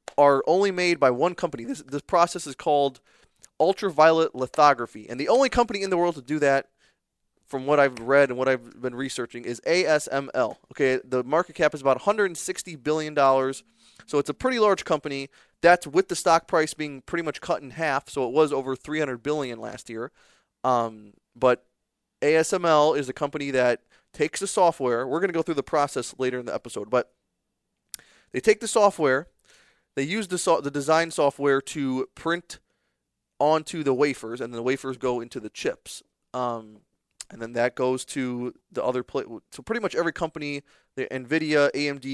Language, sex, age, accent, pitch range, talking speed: English, male, 20-39, American, 130-160 Hz, 185 wpm